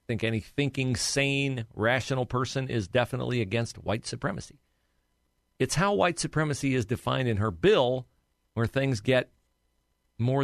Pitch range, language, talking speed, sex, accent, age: 95-140 Hz, English, 140 wpm, male, American, 50-69